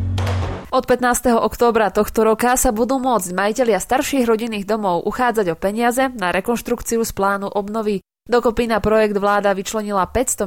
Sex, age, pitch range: female, 20-39, 190-235 Hz